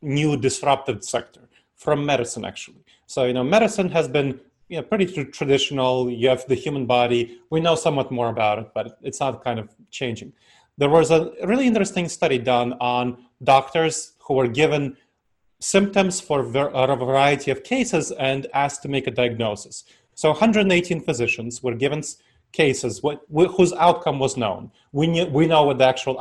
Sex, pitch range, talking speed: male, 130-175 Hz, 170 wpm